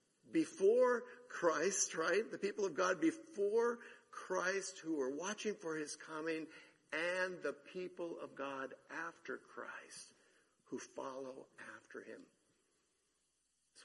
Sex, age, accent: male, 60-79, American